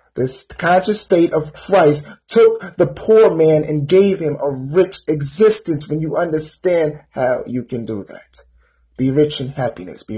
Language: English